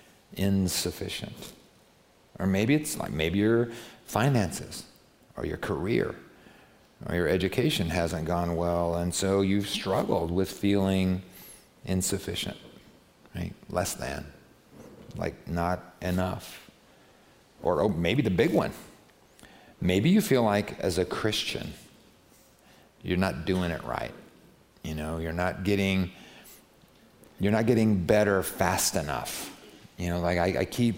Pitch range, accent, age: 95-120 Hz, American, 50-69